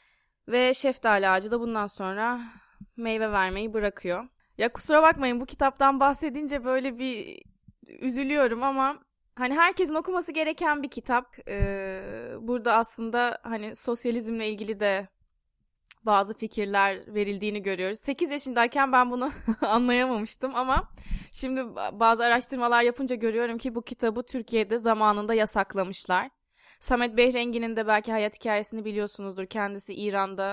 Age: 20-39